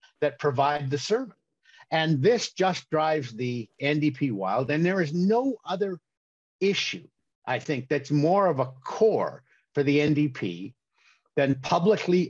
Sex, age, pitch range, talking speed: male, 50-69, 130-160 Hz, 140 wpm